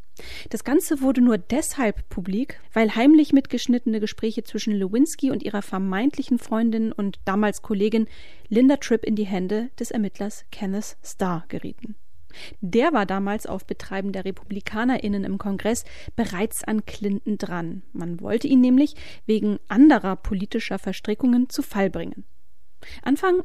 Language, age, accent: German, 30-49, German